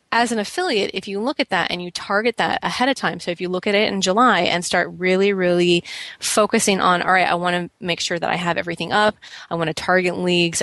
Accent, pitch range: American, 175-220 Hz